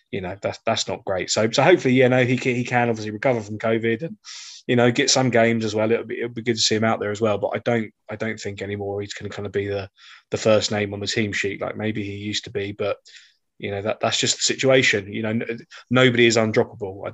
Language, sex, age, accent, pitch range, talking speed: English, male, 20-39, British, 100-115 Hz, 285 wpm